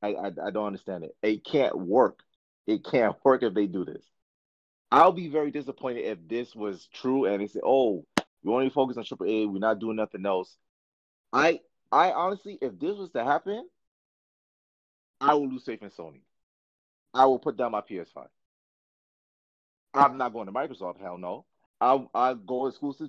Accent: American